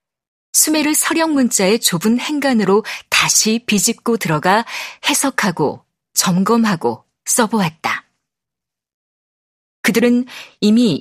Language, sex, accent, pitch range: Korean, female, native, 190-260 Hz